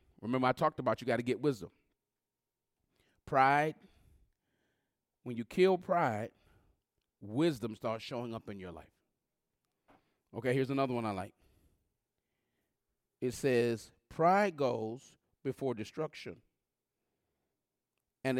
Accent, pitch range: American, 115-155 Hz